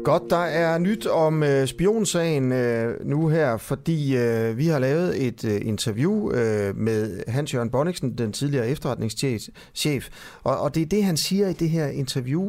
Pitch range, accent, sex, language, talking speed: 115-155 Hz, native, male, Danish, 175 wpm